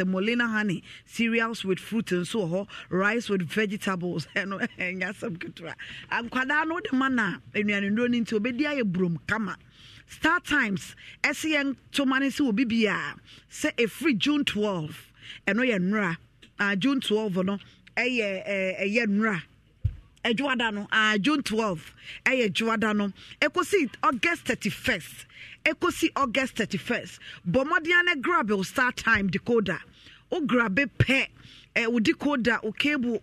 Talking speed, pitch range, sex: 145 wpm, 195-260 Hz, female